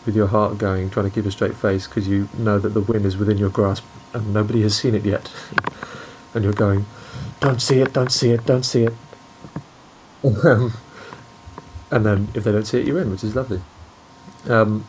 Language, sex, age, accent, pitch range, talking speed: English, male, 30-49, British, 100-115 Hz, 210 wpm